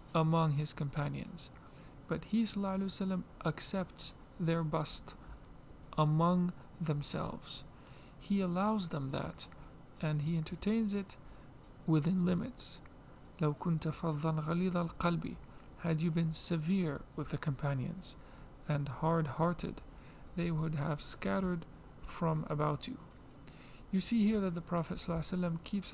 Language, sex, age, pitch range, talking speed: English, male, 40-59, 145-180 Hz, 105 wpm